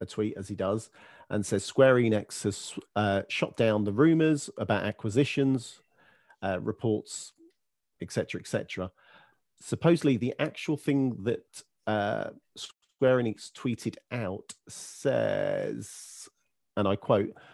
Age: 40-59